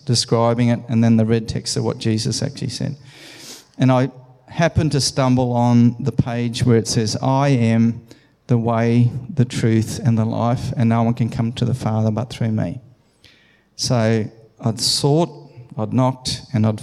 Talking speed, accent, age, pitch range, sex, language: 180 wpm, Australian, 40-59, 115-135 Hz, male, English